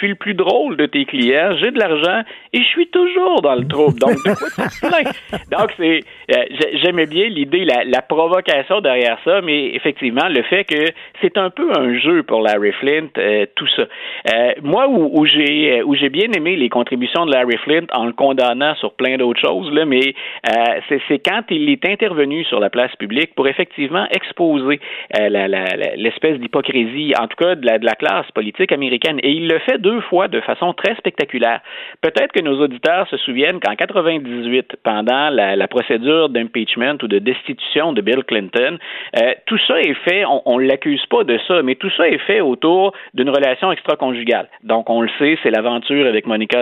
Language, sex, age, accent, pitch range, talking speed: French, male, 50-69, Canadian, 120-185 Hz, 200 wpm